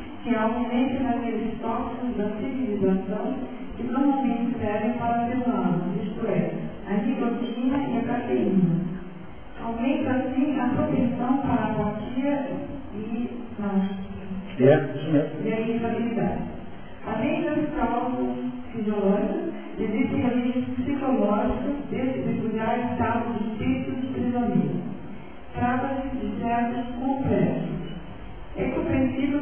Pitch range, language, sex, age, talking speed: 210-255 Hz, Portuguese, male, 40-59, 105 wpm